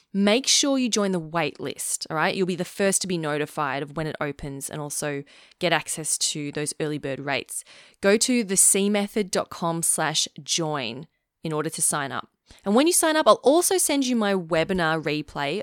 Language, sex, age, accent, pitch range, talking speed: English, female, 20-39, Australian, 150-205 Hz, 195 wpm